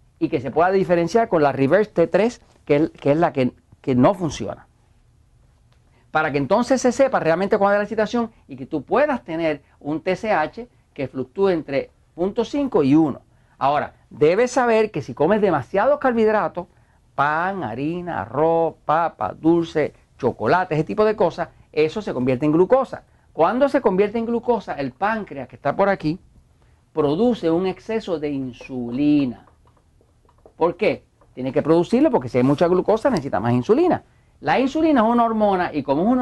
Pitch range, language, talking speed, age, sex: 145-230 Hz, Spanish, 165 wpm, 50-69, male